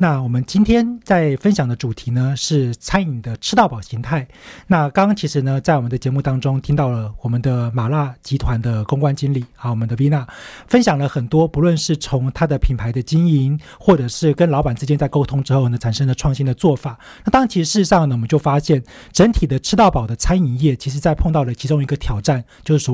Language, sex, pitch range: Chinese, male, 125-160 Hz